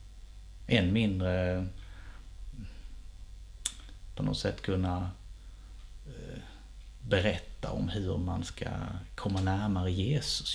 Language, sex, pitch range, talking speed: Swedish, male, 85-105 Hz, 80 wpm